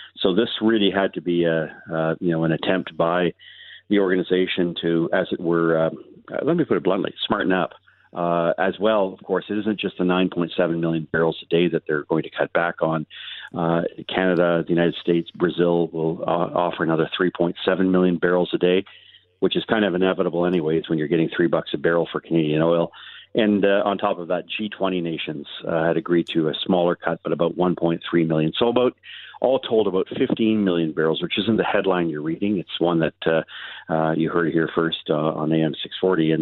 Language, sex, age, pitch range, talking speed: English, male, 40-59, 80-90 Hz, 205 wpm